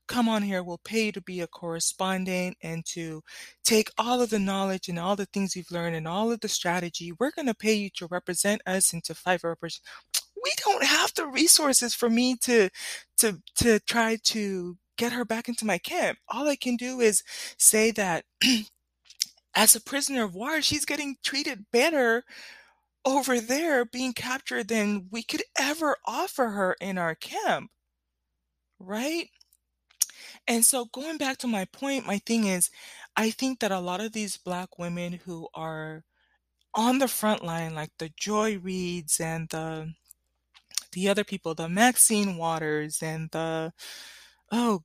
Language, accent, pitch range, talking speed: English, American, 170-235 Hz, 175 wpm